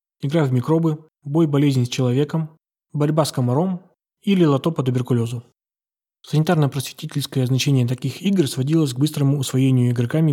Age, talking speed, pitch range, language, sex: 20-39, 135 wpm, 130-155 Hz, Russian, male